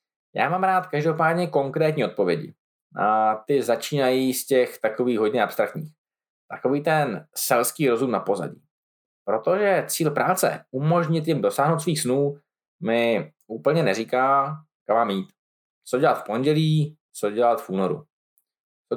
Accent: native